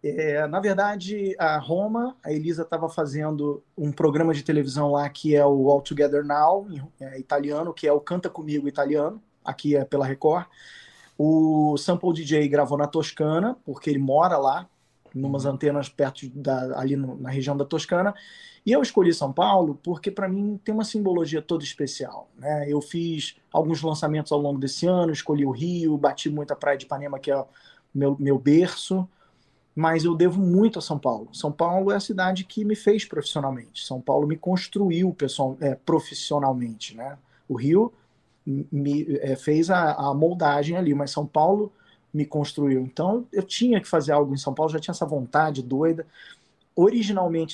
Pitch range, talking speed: 145-180 Hz, 180 wpm